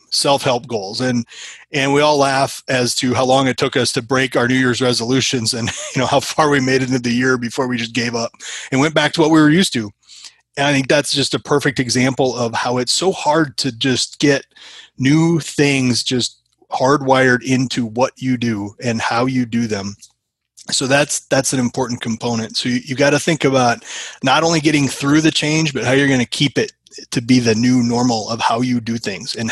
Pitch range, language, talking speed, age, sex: 120-145 Hz, English, 225 wpm, 30-49, male